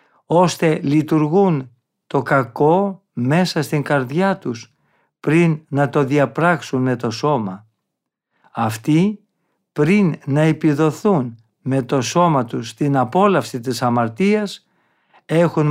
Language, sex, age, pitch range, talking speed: Greek, male, 50-69, 130-175 Hz, 105 wpm